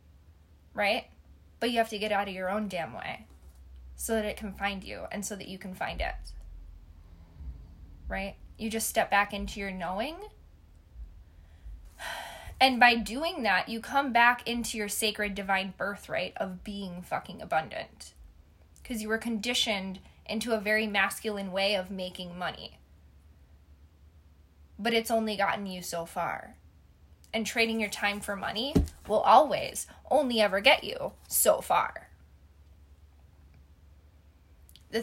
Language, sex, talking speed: English, female, 140 wpm